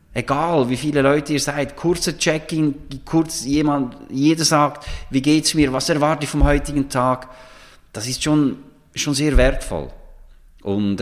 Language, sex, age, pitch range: German, male, 30-49, 100-145 Hz